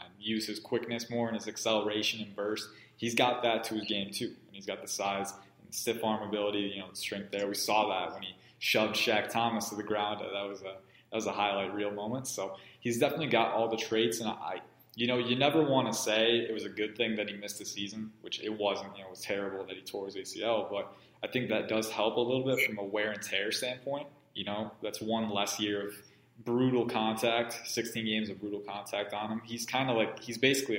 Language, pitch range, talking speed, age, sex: English, 105-115 Hz, 245 wpm, 20-39, male